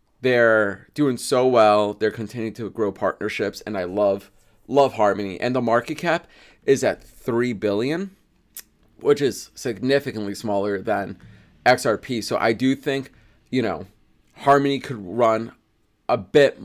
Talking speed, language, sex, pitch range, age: 140 wpm, English, male, 105-125 Hz, 20-39